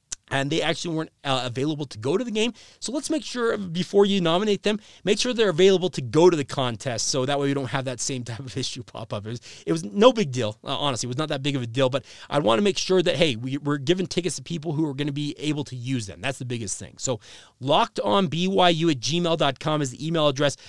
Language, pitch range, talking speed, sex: English, 130-165 Hz, 270 wpm, male